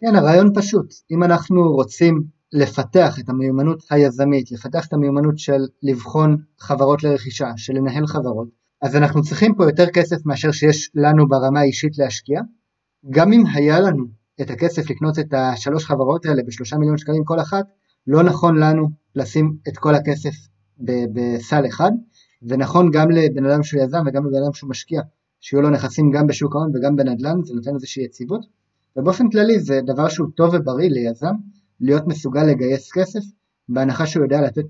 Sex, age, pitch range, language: male, 30-49, 135-170 Hz, Hebrew